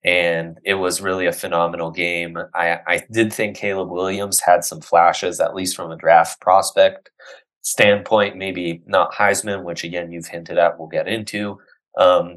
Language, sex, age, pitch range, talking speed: English, male, 20-39, 85-110 Hz, 170 wpm